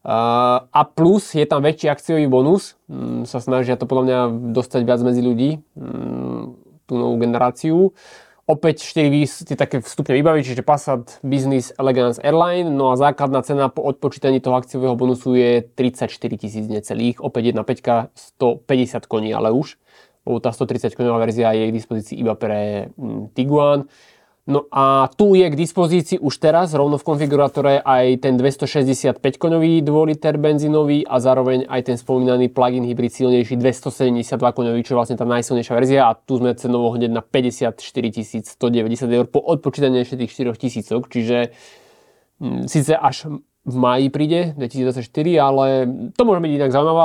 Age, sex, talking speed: 20-39, male, 160 wpm